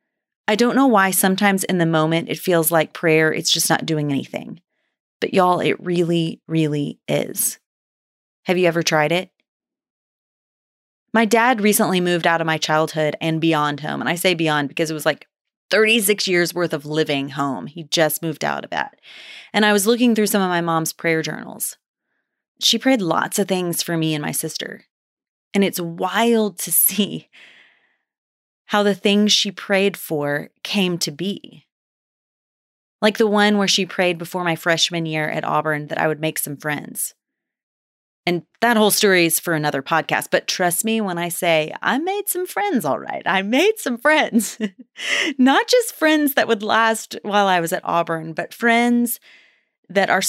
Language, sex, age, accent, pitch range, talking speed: English, female, 30-49, American, 160-210 Hz, 180 wpm